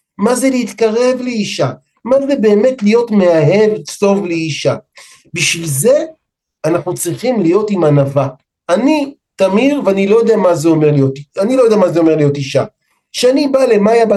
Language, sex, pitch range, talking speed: Hebrew, male, 170-265 Hz, 160 wpm